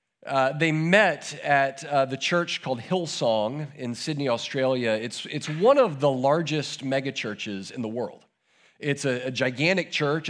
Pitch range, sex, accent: 120-160 Hz, male, American